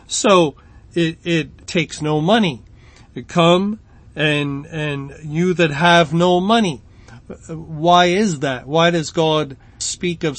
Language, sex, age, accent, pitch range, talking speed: English, male, 40-59, American, 145-180 Hz, 135 wpm